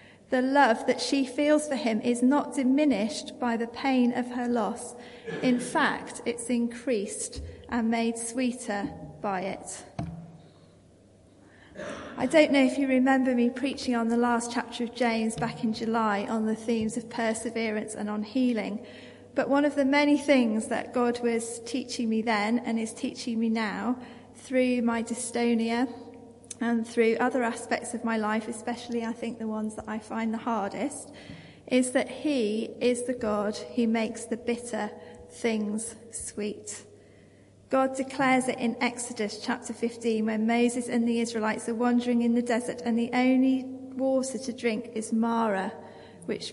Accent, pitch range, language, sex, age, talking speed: British, 220-245 Hz, English, female, 30-49, 160 wpm